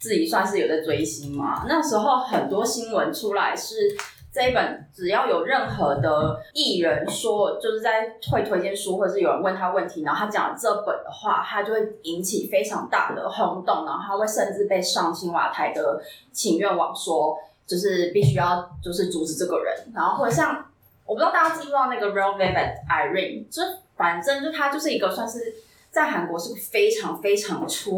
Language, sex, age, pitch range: Chinese, female, 20-39, 175-255 Hz